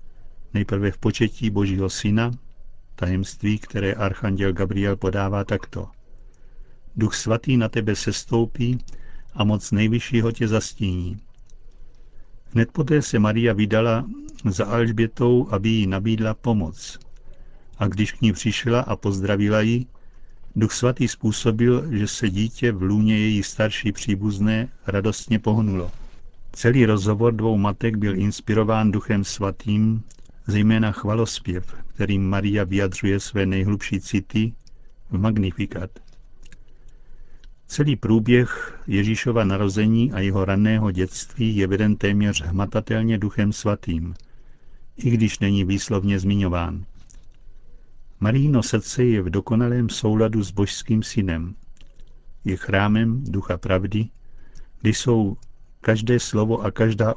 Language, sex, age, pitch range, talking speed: Czech, male, 60-79, 100-115 Hz, 115 wpm